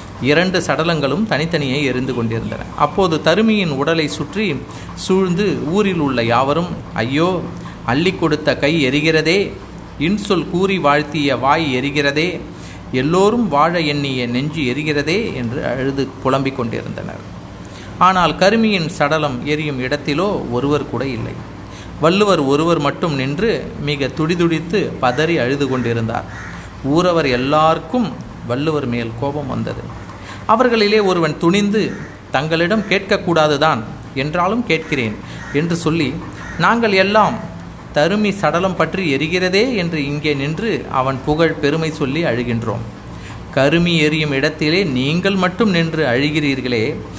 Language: Tamil